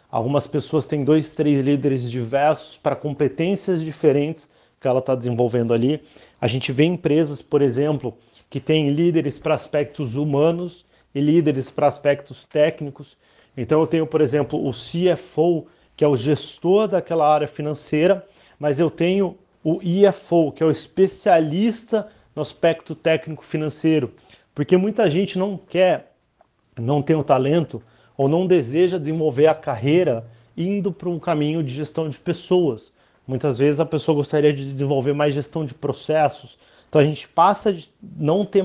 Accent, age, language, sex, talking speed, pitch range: Brazilian, 30-49, Portuguese, male, 155 wpm, 140-165 Hz